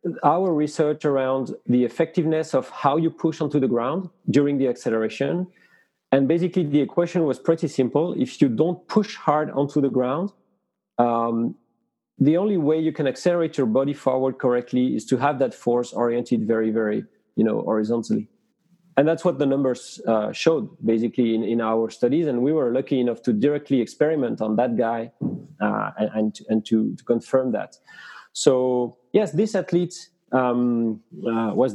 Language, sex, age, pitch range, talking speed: English, male, 40-59, 125-175 Hz, 170 wpm